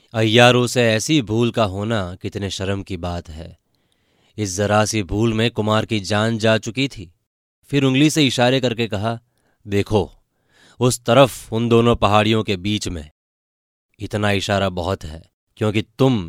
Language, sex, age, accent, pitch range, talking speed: Hindi, male, 20-39, native, 100-115 Hz, 160 wpm